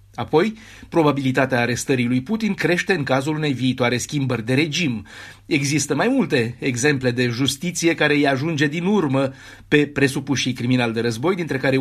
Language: Romanian